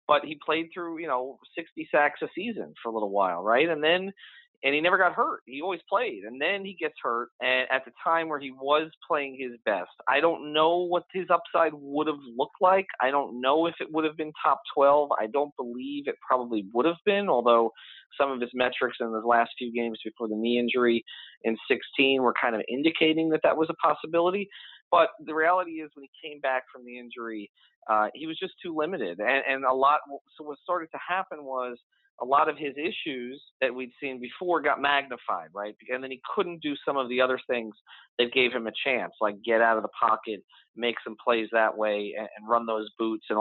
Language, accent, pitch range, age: English, American, 120-165 Hz, 30-49